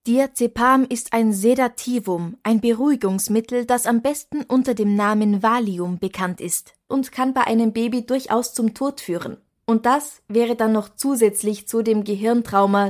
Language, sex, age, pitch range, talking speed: German, female, 20-39, 205-255 Hz, 155 wpm